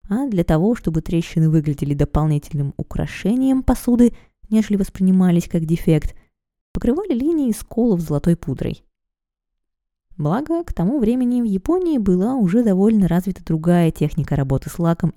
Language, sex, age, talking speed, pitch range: Russian, female, 20-39, 135 wpm, 155-225 Hz